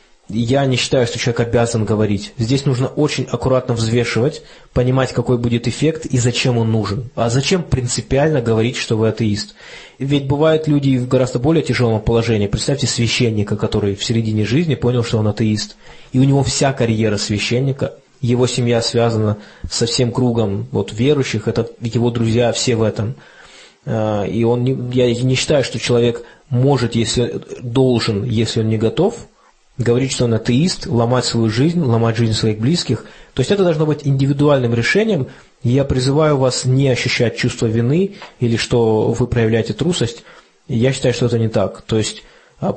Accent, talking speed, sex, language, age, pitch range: native, 165 wpm, male, Russian, 20-39, 115-130 Hz